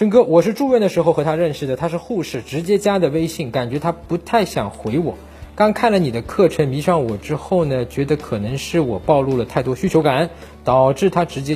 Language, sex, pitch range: Chinese, male, 145-235 Hz